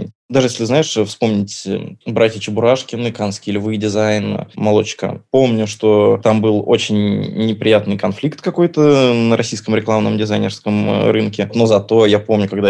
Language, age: Russian, 20-39